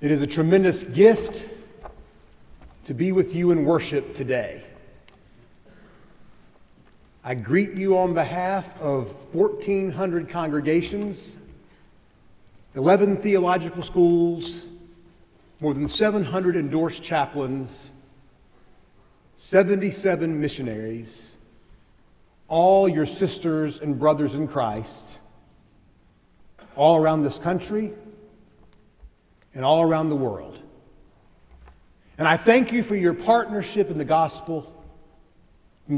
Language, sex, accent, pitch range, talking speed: English, male, American, 135-185 Hz, 95 wpm